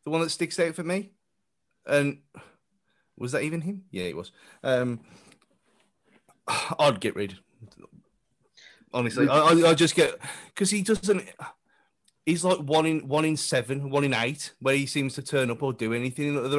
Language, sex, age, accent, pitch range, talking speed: English, male, 30-49, British, 120-170 Hz, 175 wpm